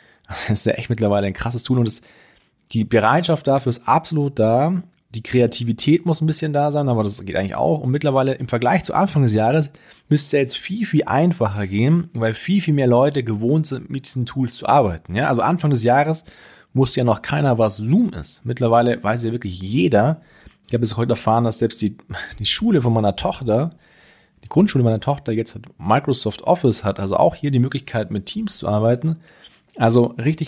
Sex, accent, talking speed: male, German, 205 wpm